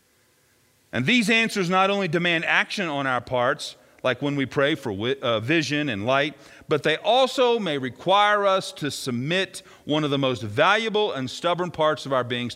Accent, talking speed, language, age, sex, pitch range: American, 175 wpm, English, 40-59, male, 130-195 Hz